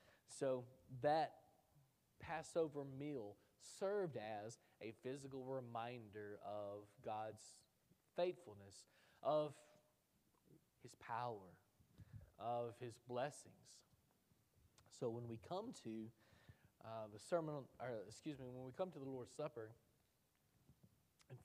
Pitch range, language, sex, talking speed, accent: 115-145 Hz, English, male, 105 wpm, American